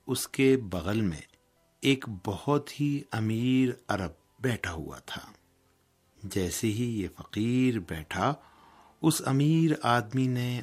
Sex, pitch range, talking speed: male, 95-130 Hz, 120 wpm